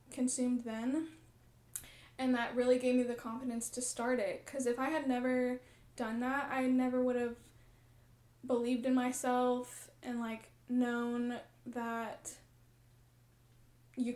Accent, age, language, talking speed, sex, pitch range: American, 10-29, English, 130 wpm, female, 240-270 Hz